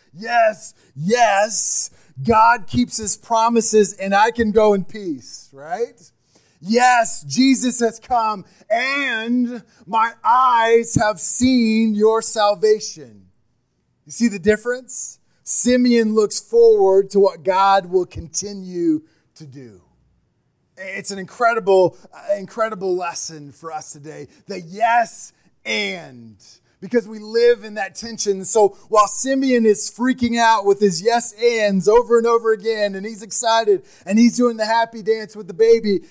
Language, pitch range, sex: English, 190-230 Hz, male